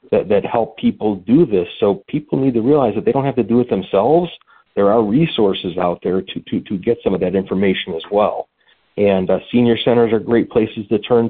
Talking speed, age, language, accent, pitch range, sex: 230 wpm, 40-59, English, American, 100-120 Hz, male